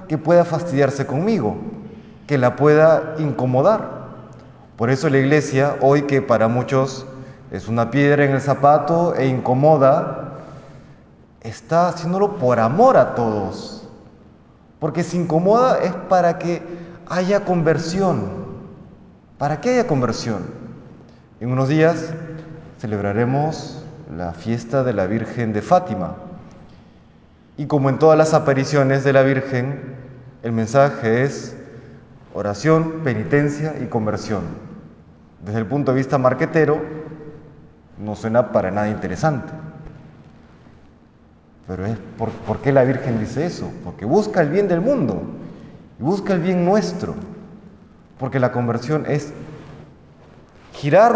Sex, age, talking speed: male, 30-49, 120 wpm